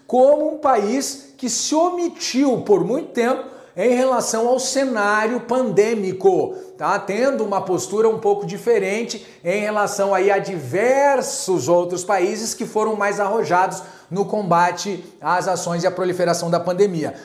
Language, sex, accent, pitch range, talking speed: Portuguese, male, Brazilian, 190-245 Hz, 145 wpm